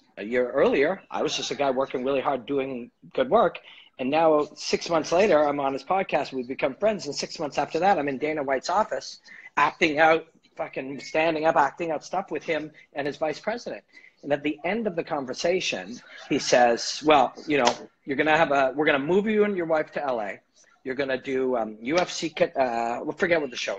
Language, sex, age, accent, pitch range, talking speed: English, male, 40-59, American, 130-170 Hz, 220 wpm